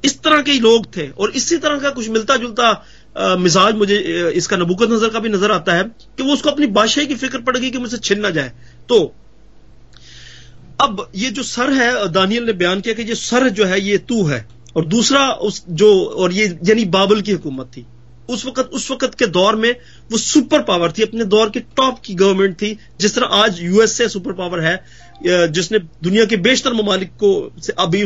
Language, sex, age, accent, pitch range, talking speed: Hindi, male, 30-49, native, 185-225 Hz, 205 wpm